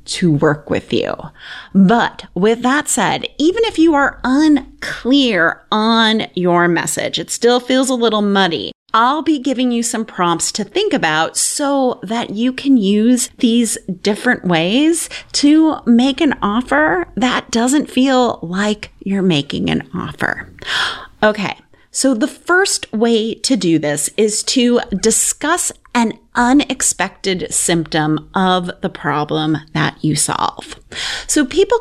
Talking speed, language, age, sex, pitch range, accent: 140 wpm, English, 30-49, female, 170-260 Hz, American